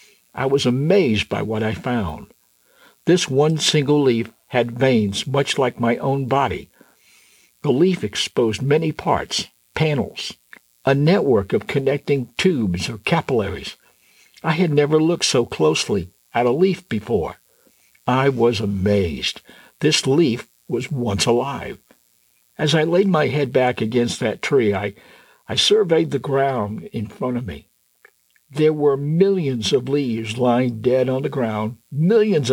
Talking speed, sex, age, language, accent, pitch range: 145 wpm, male, 60-79, English, American, 110-145 Hz